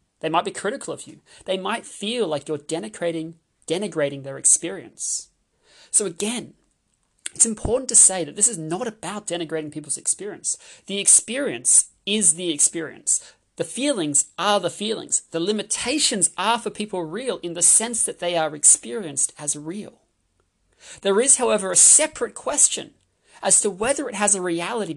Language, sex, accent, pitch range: English, male, Australian, 170-230 Hz